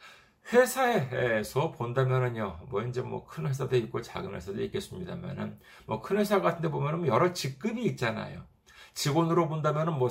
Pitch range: 130-200 Hz